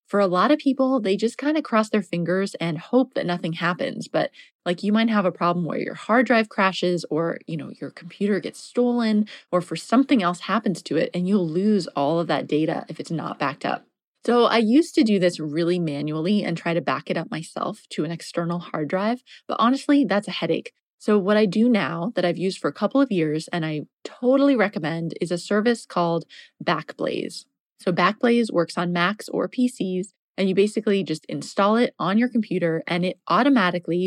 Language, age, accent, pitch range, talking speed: English, 20-39, American, 170-220 Hz, 215 wpm